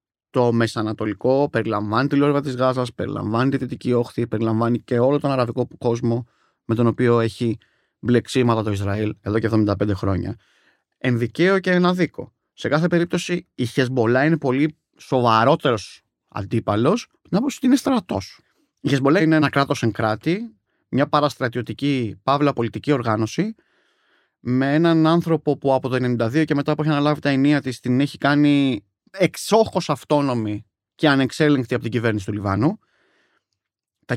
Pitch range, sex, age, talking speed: 115-155 Hz, male, 30-49, 150 wpm